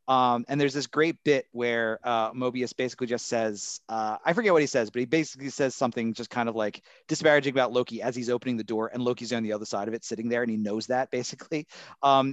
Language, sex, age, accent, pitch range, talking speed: English, male, 30-49, American, 120-155 Hz, 250 wpm